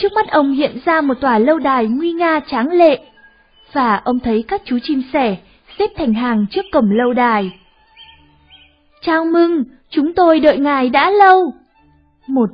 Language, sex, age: Vietnamese, female, 20-39